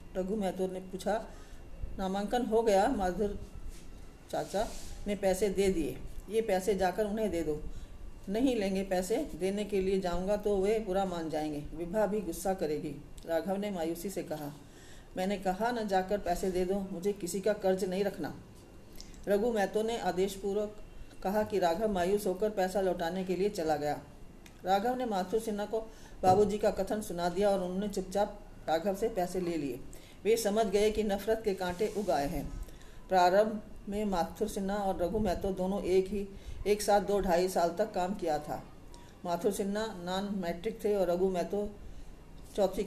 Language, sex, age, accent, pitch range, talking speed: Hindi, female, 40-59, native, 175-205 Hz, 170 wpm